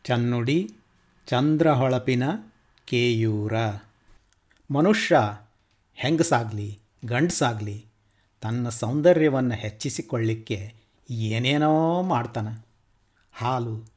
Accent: native